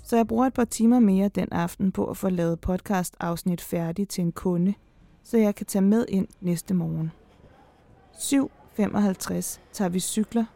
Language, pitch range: Danish, 165-200 Hz